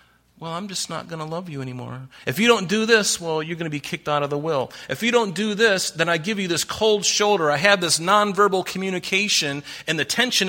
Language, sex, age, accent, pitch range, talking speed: English, male, 40-59, American, 120-170 Hz, 250 wpm